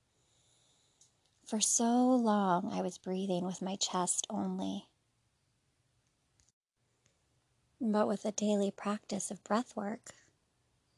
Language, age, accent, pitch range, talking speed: English, 30-49, American, 125-205 Hz, 100 wpm